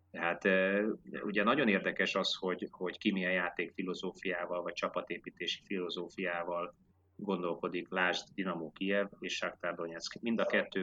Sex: male